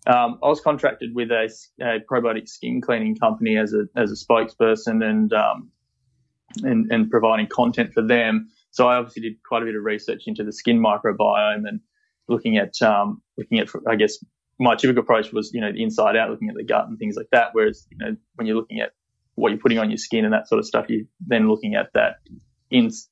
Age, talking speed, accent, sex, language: 20-39, 225 wpm, Australian, male, English